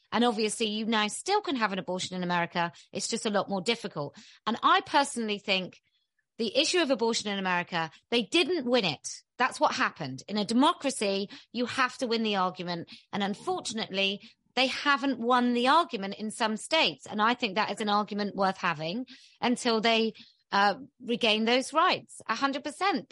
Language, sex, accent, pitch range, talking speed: English, female, British, 195-260 Hz, 180 wpm